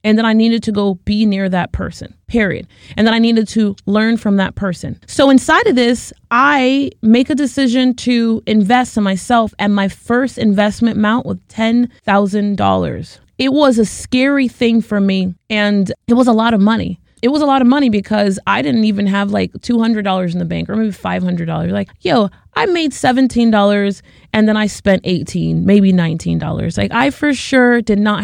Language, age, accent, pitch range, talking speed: English, 30-49, American, 195-240 Hz, 190 wpm